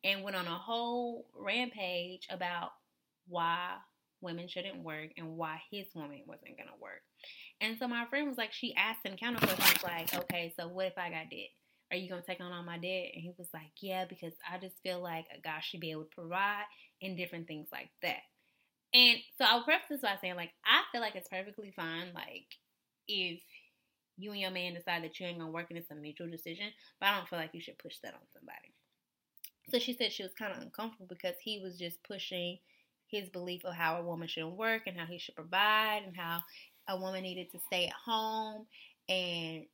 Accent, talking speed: American, 225 wpm